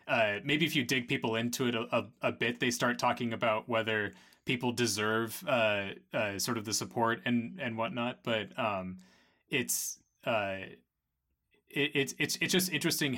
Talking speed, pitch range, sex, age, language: 165 wpm, 105-130 Hz, male, 20-39, English